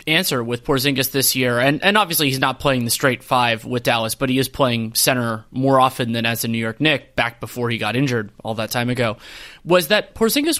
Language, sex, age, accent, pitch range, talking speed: English, male, 30-49, American, 130-165 Hz, 230 wpm